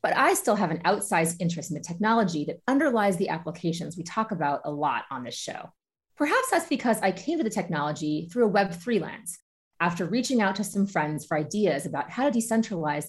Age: 30-49